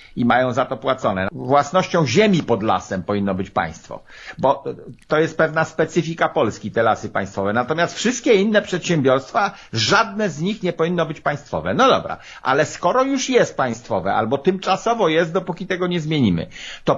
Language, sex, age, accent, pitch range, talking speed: Polish, male, 50-69, native, 150-200 Hz, 165 wpm